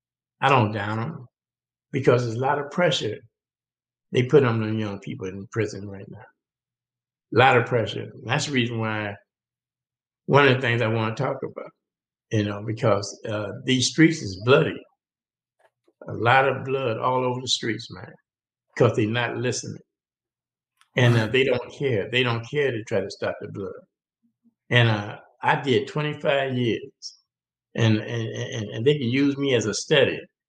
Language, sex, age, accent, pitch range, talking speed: English, male, 60-79, American, 110-140 Hz, 175 wpm